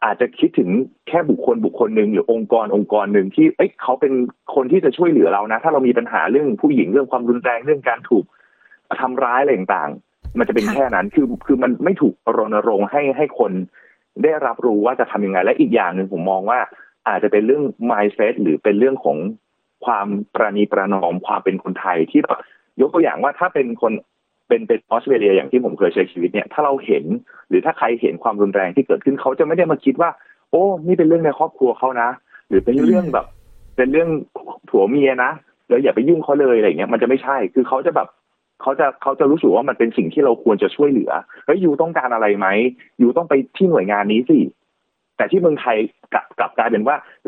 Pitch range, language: 110-185 Hz, Thai